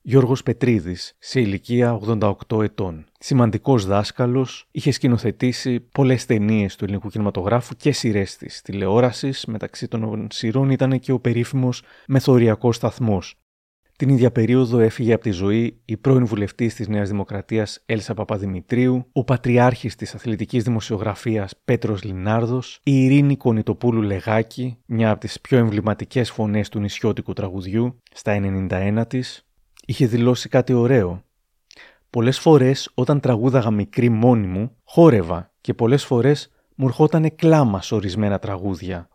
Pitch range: 105-130 Hz